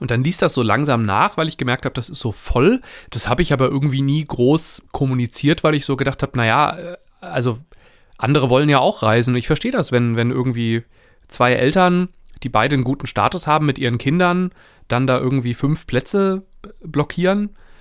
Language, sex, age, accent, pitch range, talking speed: German, male, 30-49, German, 120-155 Hz, 200 wpm